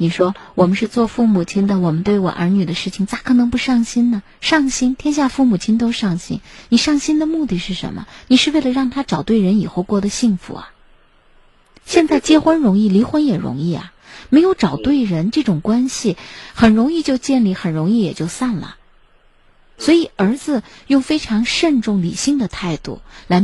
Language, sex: Chinese, female